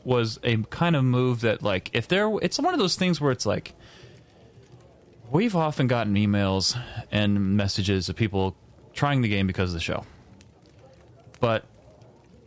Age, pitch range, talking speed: 30-49, 100-130 Hz, 160 wpm